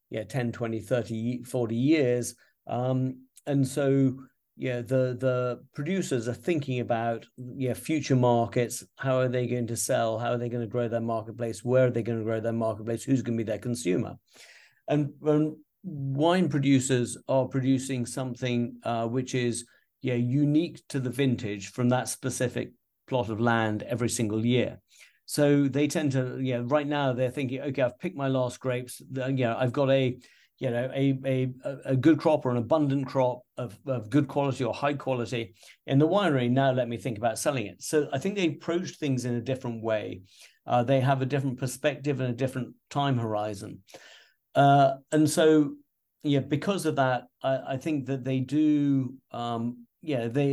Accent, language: British, English